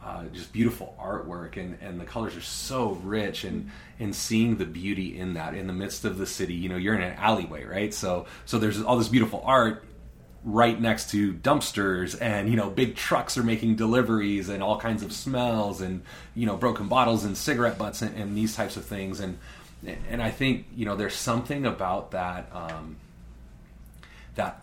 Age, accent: 30-49, American